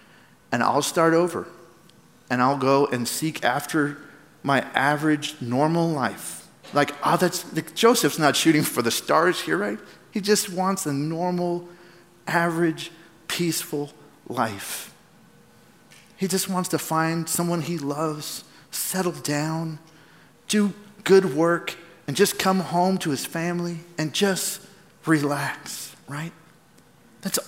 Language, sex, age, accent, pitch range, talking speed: English, male, 40-59, American, 140-175 Hz, 125 wpm